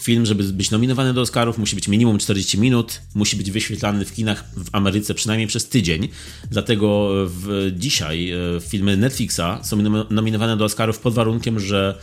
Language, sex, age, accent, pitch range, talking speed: Polish, male, 30-49, native, 85-110 Hz, 160 wpm